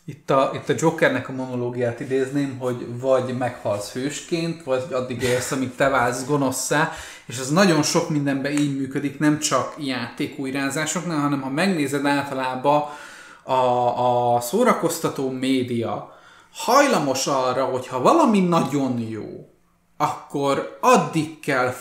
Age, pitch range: 20-39, 125-155 Hz